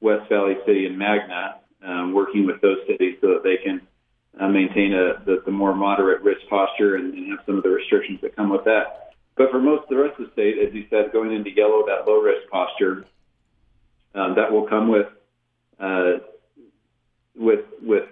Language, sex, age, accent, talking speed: English, male, 40-59, American, 200 wpm